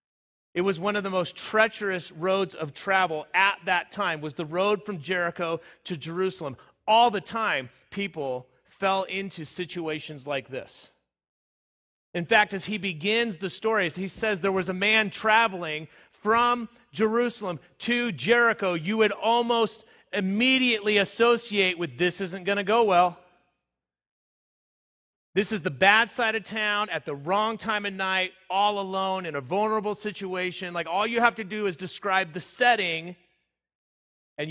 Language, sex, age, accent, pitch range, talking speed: English, male, 30-49, American, 165-205 Hz, 155 wpm